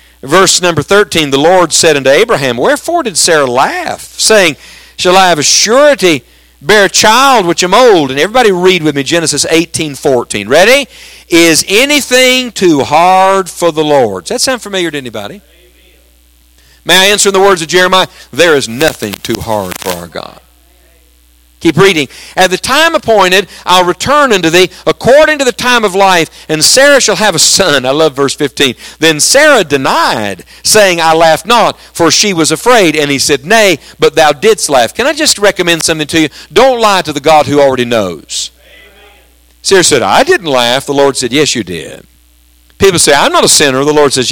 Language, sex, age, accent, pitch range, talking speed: English, male, 50-69, American, 140-205 Hz, 190 wpm